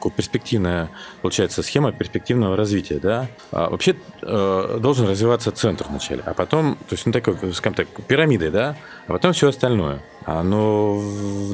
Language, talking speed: Russian, 130 wpm